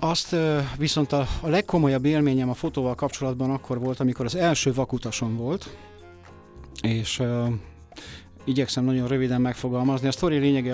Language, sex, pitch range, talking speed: Hungarian, male, 115-140 Hz, 135 wpm